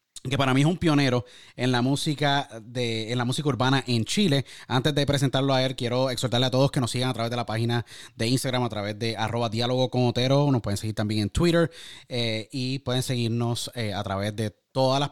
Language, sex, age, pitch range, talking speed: Spanish, male, 20-39, 120-145 Hz, 230 wpm